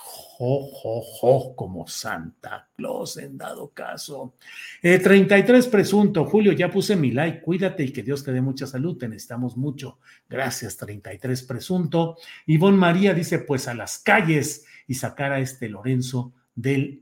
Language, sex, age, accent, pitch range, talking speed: Spanish, male, 50-69, Mexican, 125-170 Hz, 160 wpm